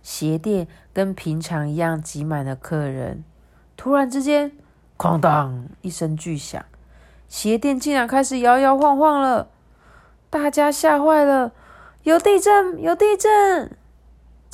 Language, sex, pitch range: Chinese, female, 170-260 Hz